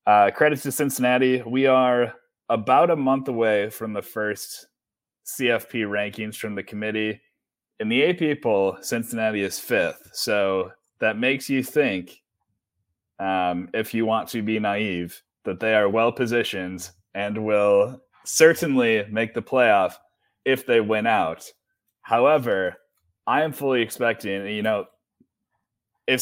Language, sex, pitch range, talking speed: English, male, 105-140 Hz, 135 wpm